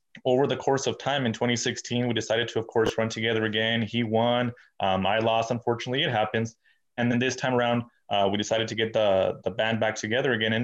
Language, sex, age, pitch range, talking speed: English, male, 20-39, 105-120 Hz, 225 wpm